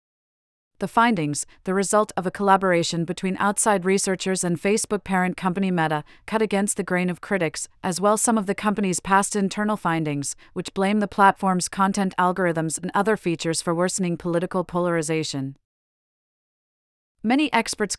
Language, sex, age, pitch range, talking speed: English, female, 40-59, 170-200 Hz, 150 wpm